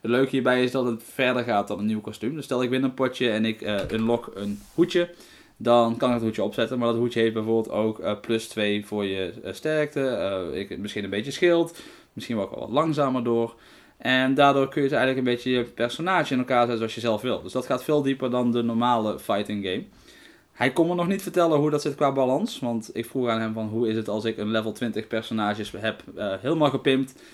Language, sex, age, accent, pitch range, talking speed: Dutch, male, 20-39, Dutch, 110-130 Hz, 245 wpm